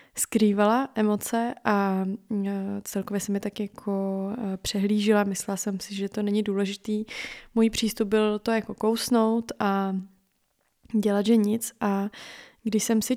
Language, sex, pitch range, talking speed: Czech, female, 200-225 Hz, 135 wpm